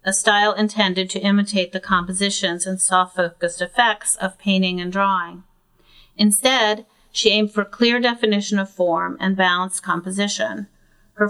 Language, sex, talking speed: English, female, 140 wpm